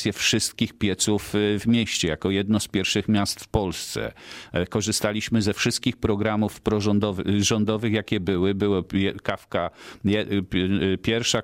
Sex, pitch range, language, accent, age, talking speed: male, 95-110 Hz, Polish, native, 40-59, 110 wpm